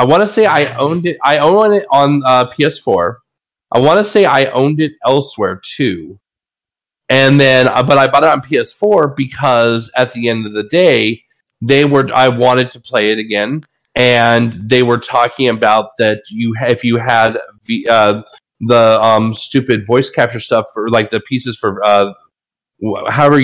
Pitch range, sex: 110-135 Hz, male